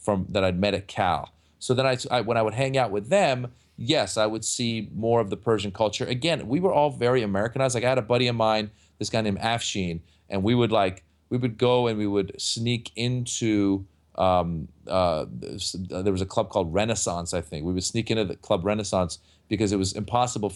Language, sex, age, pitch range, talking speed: English, male, 40-59, 95-120 Hz, 220 wpm